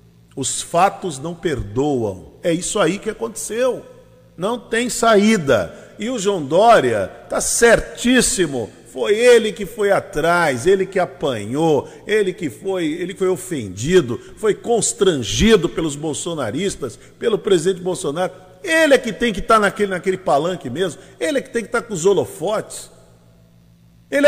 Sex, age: male, 50-69